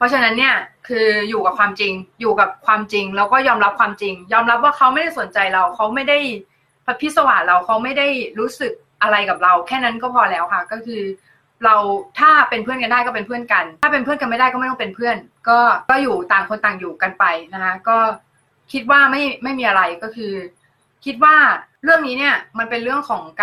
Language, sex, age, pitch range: Thai, female, 20-39, 200-255 Hz